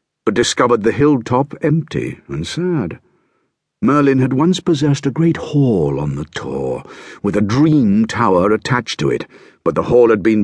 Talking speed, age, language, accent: 165 wpm, 60-79, English, British